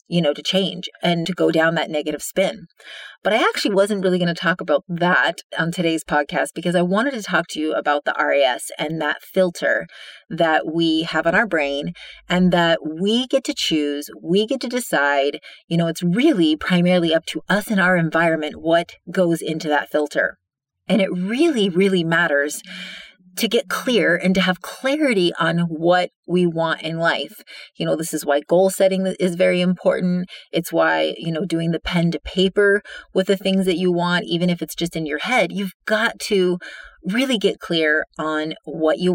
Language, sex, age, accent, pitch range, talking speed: English, female, 30-49, American, 160-195 Hz, 195 wpm